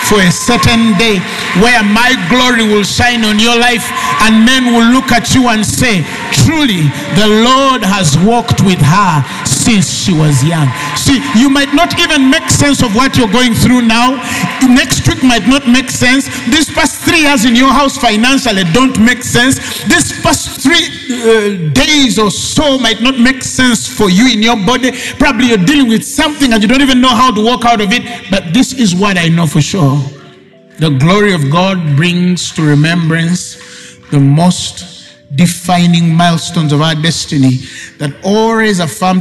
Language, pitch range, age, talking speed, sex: English, 155-245 Hz, 50-69, 180 wpm, male